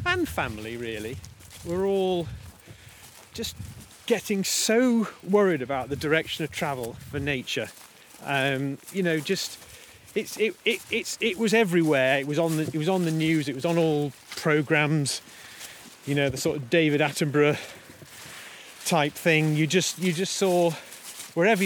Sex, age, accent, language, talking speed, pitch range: male, 30-49, British, English, 155 wpm, 140-185 Hz